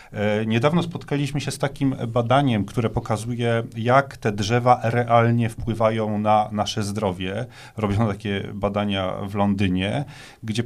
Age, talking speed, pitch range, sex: 40-59, 125 wpm, 105-130 Hz, male